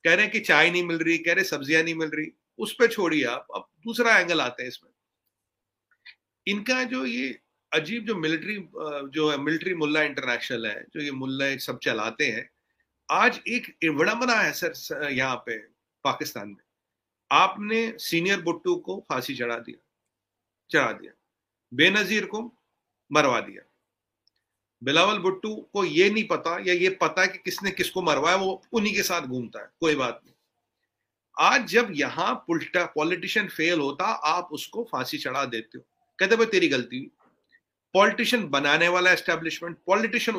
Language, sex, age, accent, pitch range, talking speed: English, male, 40-59, Indian, 155-215 Hz, 155 wpm